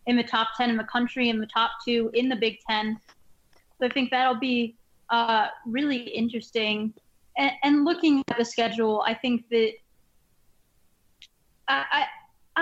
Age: 20-39